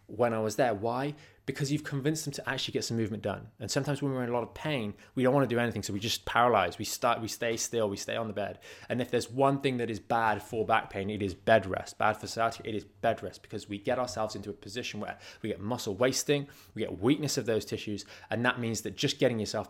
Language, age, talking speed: English, 20-39, 275 wpm